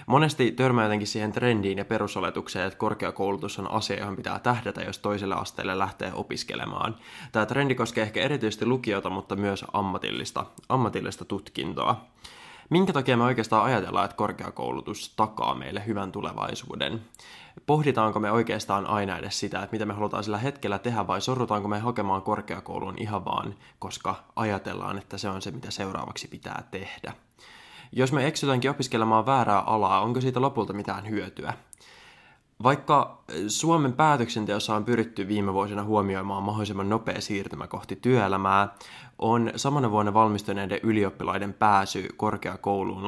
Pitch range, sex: 100-120 Hz, male